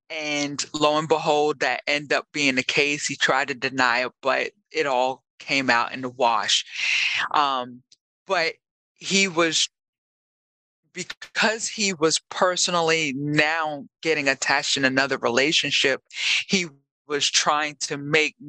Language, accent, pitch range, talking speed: English, American, 140-175 Hz, 135 wpm